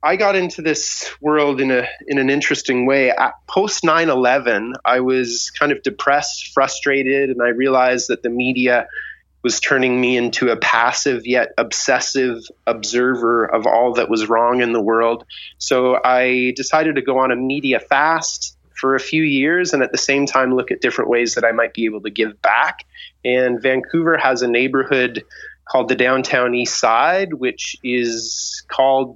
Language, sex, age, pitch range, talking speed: English, male, 30-49, 125-145 Hz, 175 wpm